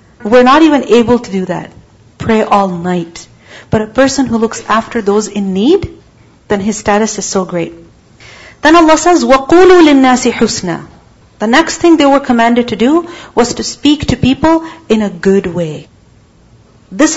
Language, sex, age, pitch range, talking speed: English, female, 40-59, 220-300 Hz, 170 wpm